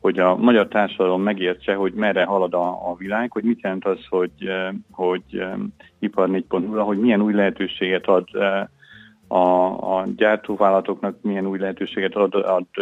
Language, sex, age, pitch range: Hungarian, male, 40-59, 95-105 Hz